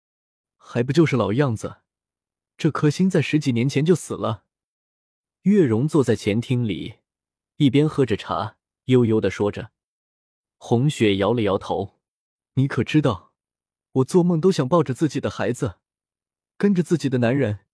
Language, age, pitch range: Chinese, 20-39, 105-150 Hz